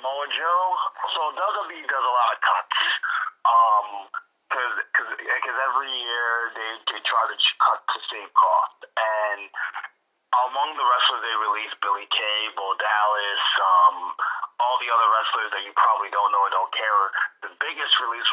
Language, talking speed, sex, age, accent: English, 160 wpm, male, 30-49, American